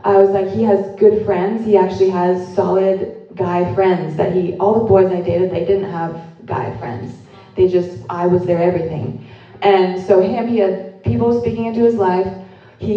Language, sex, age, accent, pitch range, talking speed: English, female, 20-39, American, 185-210 Hz, 195 wpm